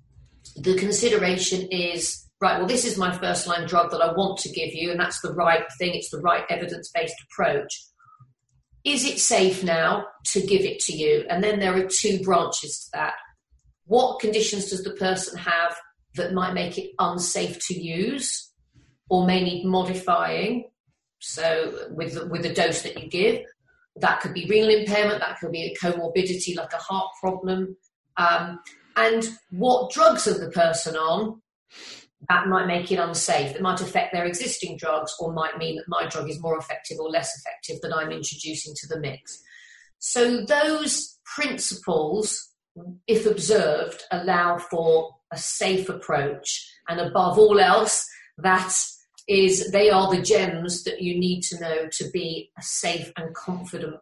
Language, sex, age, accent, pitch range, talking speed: English, female, 40-59, British, 165-205 Hz, 170 wpm